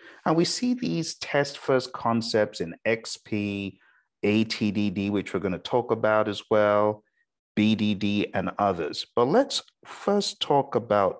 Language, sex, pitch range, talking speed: English, male, 105-145 Hz, 135 wpm